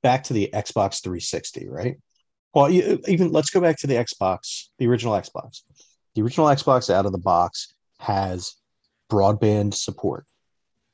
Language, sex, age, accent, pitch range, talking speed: English, male, 30-49, American, 95-120 Hz, 155 wpm